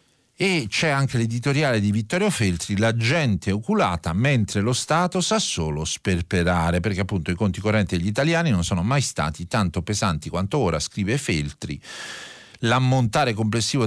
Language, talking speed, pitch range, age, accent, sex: Italian, 150 wpm, 85-115 Hz, 40-59, native, male